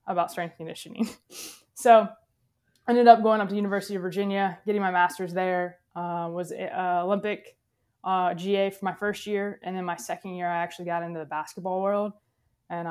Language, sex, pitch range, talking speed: English, female, 180-205 Hz, 185 wpm